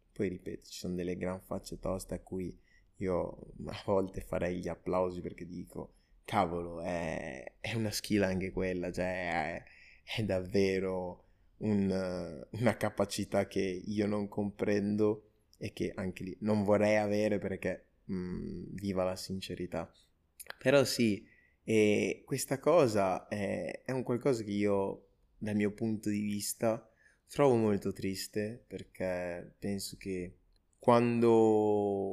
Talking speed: 135 wpm